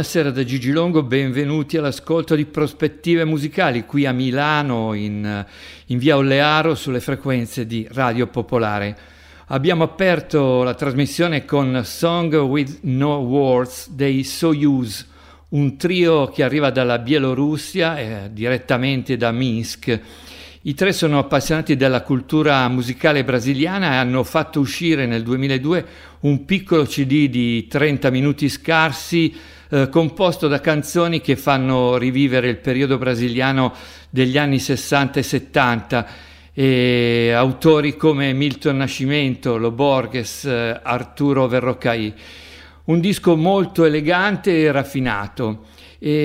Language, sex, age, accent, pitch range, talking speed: Italian, male, 50-69, native, 125-155 Hz, 120 wpm